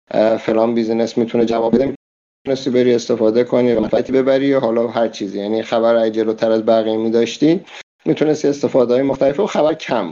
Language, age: Persian, 50-69